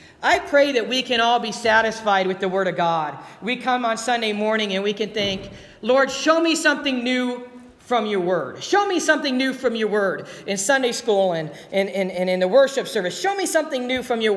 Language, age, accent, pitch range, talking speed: English, 50-69, American, 200-255 Hz, 225 wpm